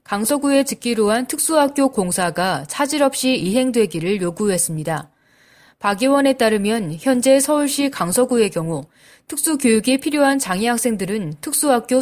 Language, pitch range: Korean, 195-275 Hz